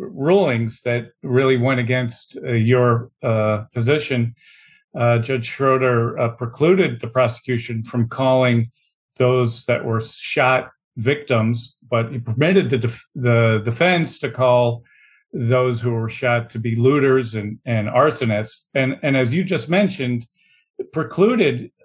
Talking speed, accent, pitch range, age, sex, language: 135 wpm, American, 120-145 Hz, 40-59, male, English